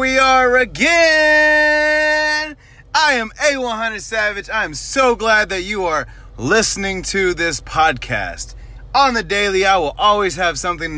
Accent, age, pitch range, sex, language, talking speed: American, 30-49, 165-230 Hz, male, English, 140 wpm